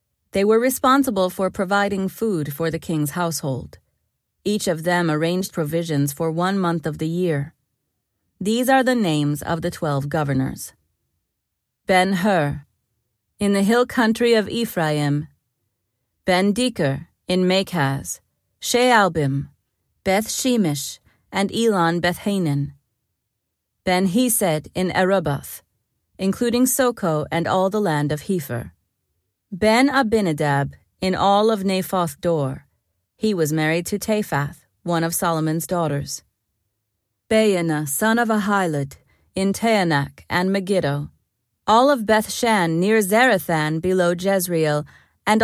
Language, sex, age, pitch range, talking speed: English, female, 30-49, 145-205 Hz, 115 wpm